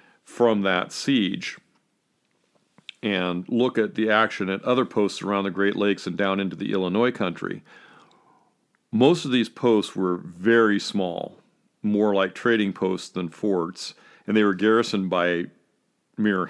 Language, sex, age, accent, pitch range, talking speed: English, male, 40-59, American, 95-110 Hz, 145 wpm